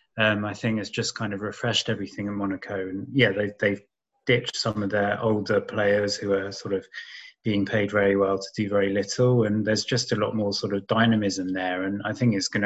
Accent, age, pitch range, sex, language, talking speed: British, 20-39, 100-115 Hz, male, English, 225 wpm